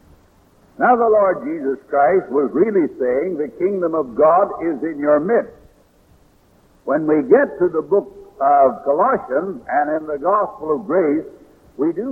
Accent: American